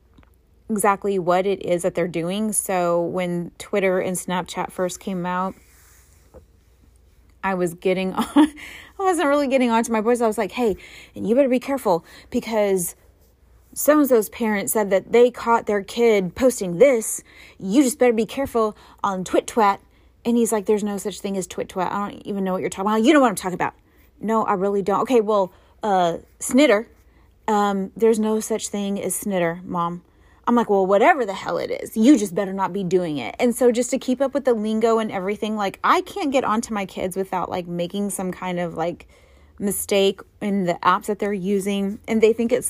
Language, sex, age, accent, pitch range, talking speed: English, female, 30-49, American, 185-225 Hz, 210 wpm